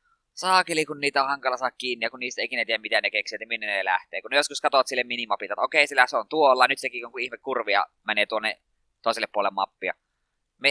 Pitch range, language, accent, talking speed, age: 120-150 Hz, Finnish, native, 235 wpm, 20-39